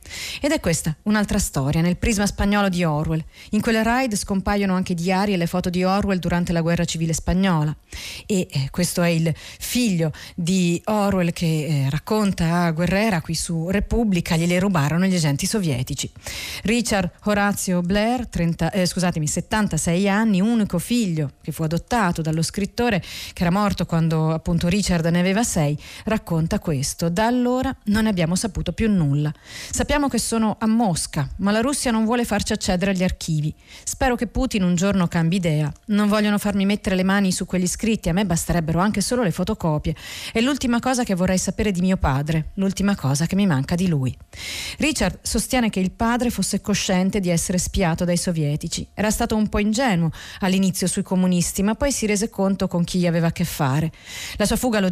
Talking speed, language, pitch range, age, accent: 185 wpm, Italian, 165-210 Hz, 40-59, native